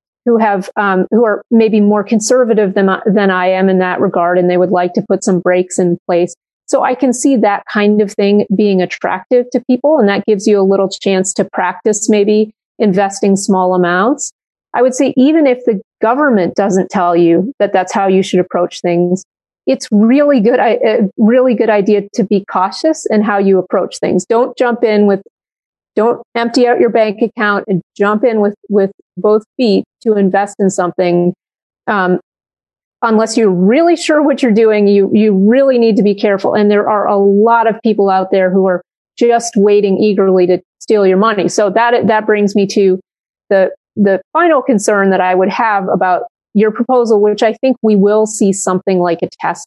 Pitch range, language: 190-230 Hz, English